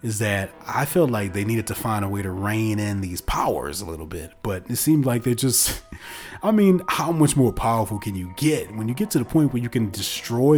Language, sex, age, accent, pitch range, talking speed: English, male, 30-49, American, 100-150 Hz, 250 wpm